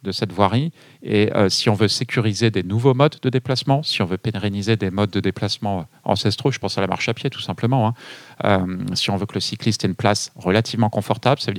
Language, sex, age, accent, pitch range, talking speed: French, male, 40-59, French, 100-120 Hz, 245 wpm